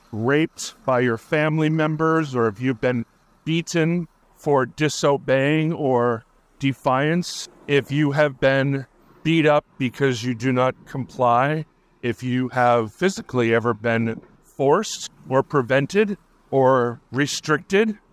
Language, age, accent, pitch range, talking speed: English, 50-69, American, 125-150 Hz, 120 wpm